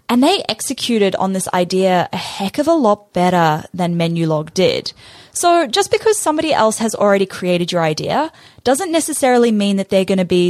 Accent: Australian